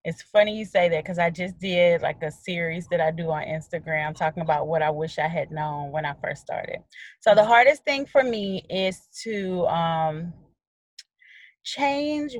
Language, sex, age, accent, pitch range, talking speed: English, female, 30-49, American, 165-200 Hz, 190 wpm